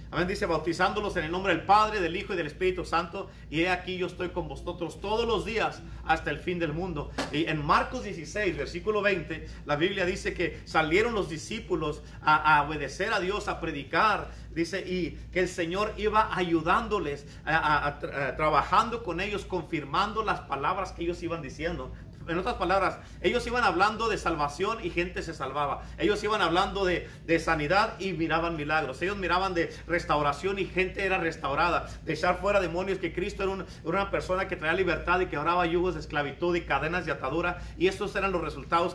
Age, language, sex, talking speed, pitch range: 50-69, Spanish, male, 195 wpm, 160-190 Hz